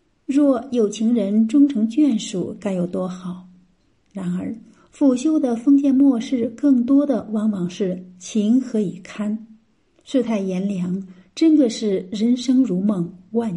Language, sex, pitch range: Chinese, female, 195-250 Hz